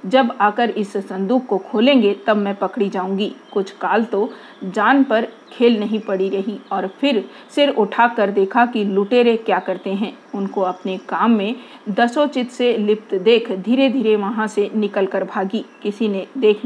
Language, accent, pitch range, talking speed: Hindi, native, 200-245 Hz, 170 wpm